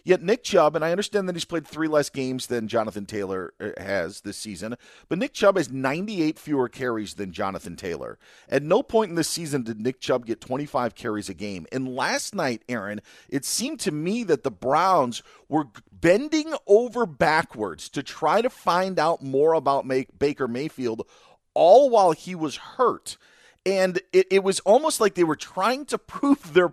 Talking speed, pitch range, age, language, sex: 185 wpm, 130-185 Hz, 40-59, English, male